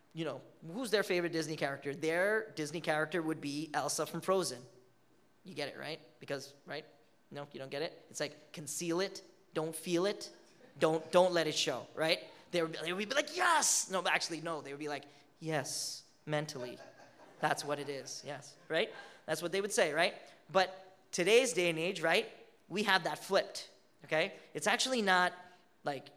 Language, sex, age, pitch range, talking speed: English, male, 20-39, 145-185 Hz, 190 wpm